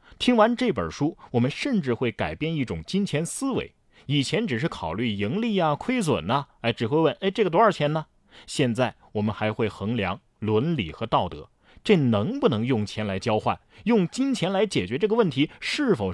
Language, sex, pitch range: Chinese, male, 105-160 Hz